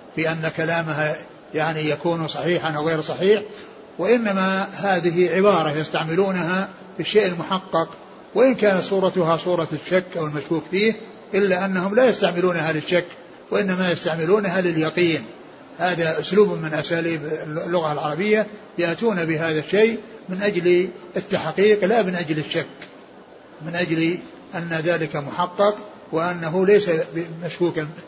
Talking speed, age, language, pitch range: 115 wpm, 60-79, Arabic, 160-195 Hz